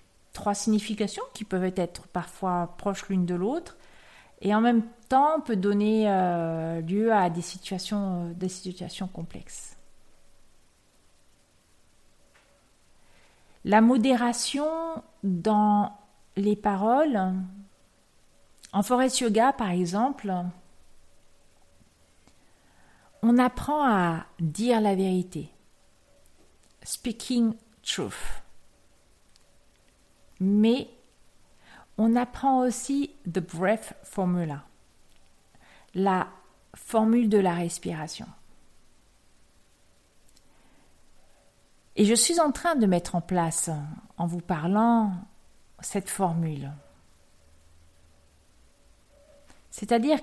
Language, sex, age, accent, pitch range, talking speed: French, female, 40-59, French, 165-220 Hz, 85 wpm